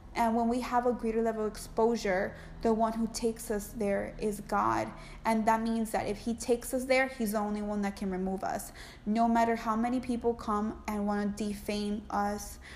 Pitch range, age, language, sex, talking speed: 205-230 Hz, 20-39, English, female, 210 wpm